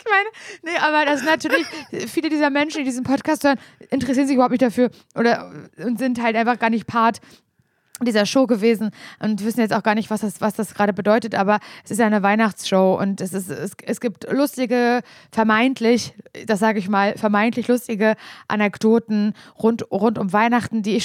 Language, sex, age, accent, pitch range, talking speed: German, female, 20-39, German, 190-225 Hz, 195 wpm